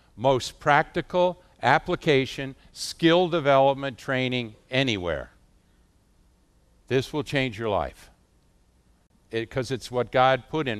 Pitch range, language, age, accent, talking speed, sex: 105-145 Hz, English, 60-79, American, 100 wpm, male